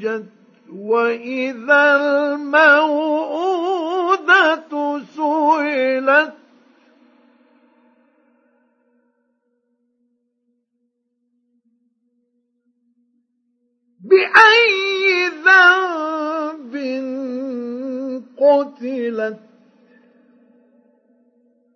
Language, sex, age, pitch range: Arabic, male, 50-69, 245-315 Hz